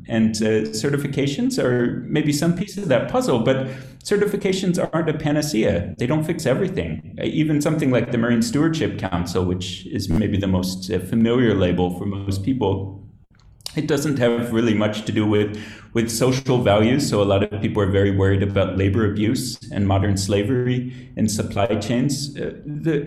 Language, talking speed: English, 175 wpm